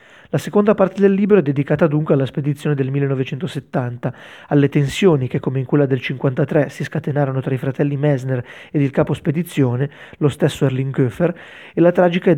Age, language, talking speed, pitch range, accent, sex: 30-49, Italian, 185 wpm, 140-165 Hz, native, male